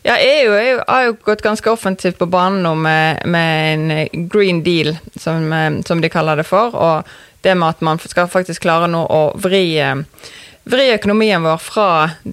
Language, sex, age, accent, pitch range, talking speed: English, female, 20-39, Swedish, 155-190 Hz, 175 wpm